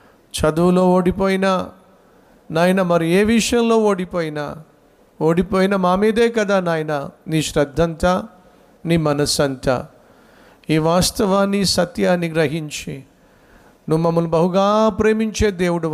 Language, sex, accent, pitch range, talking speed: Telugu, male, native, 160-220 Hz, 95 wpm